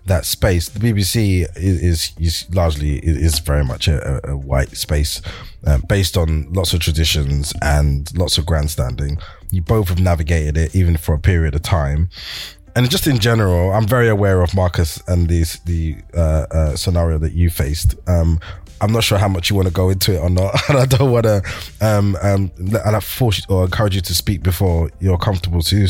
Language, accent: English, British